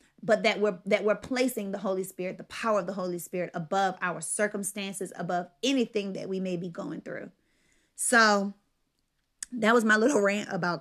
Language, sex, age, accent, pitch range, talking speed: English, female, 30-49, American, 190-220 Hz, 185 wpm